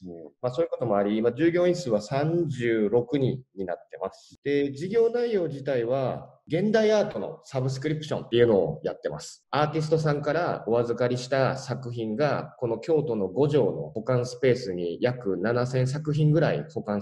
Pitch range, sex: 115-155 Hz, male